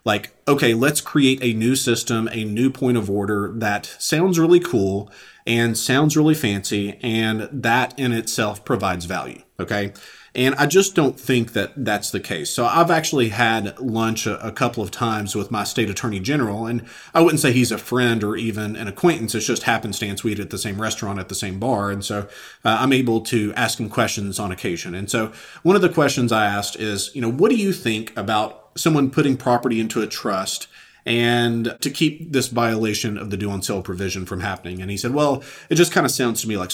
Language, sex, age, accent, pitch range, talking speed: English, male, 40-59, American, 105-130 Hz, 215 wpm